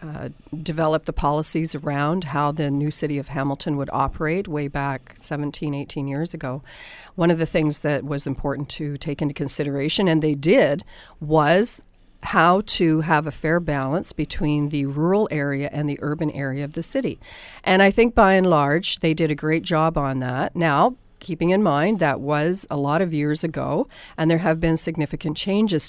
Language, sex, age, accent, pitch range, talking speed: English, female, 40-59, American, 145-175 Hz, 190 wpm